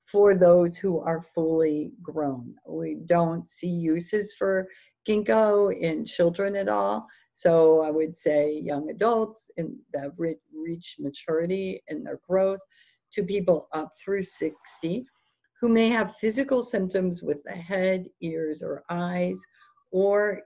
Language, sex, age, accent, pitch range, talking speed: English, female, 50-69, American, 165-205 Hz, 130 wpm